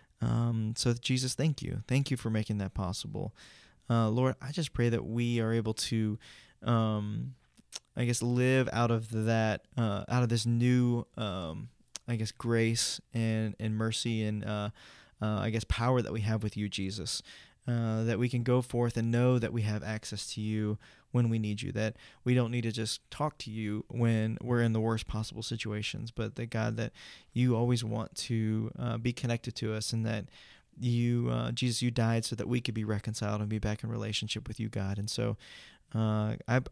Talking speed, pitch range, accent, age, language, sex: 205 wpm, 105-120 Hz, American, 20-39, English, male